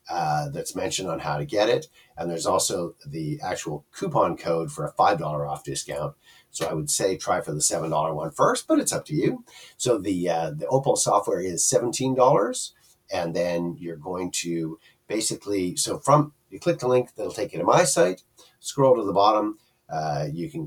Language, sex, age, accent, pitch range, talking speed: English, male, 50-69, American, 85-130 Hz, 195 wpm